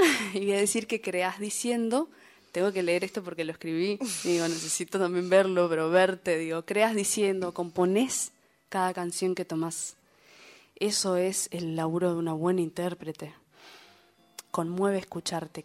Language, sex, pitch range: Spanish, female, 165-195 Hz